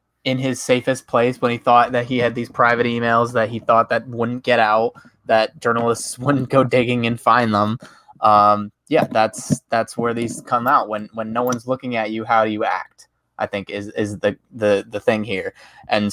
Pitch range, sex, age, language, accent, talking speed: 115-125 Hz, male, 20-39, English, American, 210 wpm